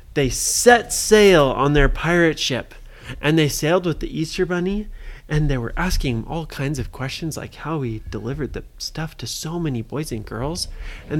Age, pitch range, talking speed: 30-49, 125-180 Hz, 190 wpm